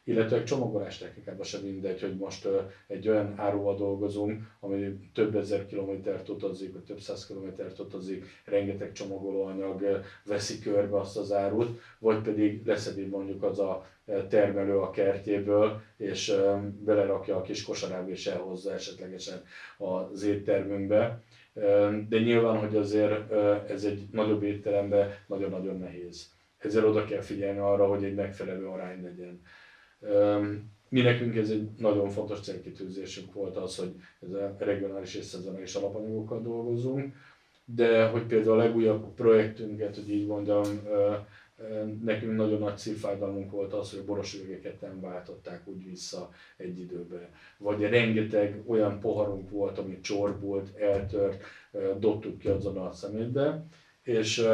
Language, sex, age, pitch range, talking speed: Hungarian, male, 30-49, 100-110 Hz, 130 wpm